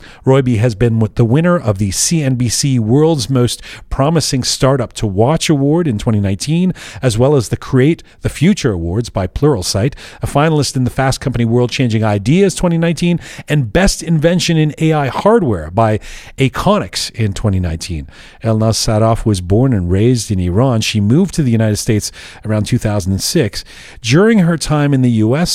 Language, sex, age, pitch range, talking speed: English, male, 40-59, 110-145 Hz, 165 wpm